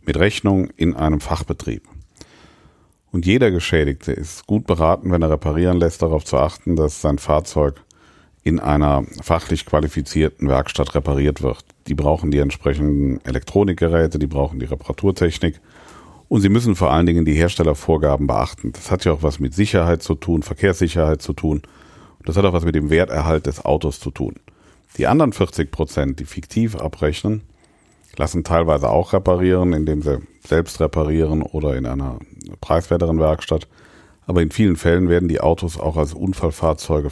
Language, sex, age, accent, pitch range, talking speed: German, male, 50-69, German, 75-90 Hz, 160 wpm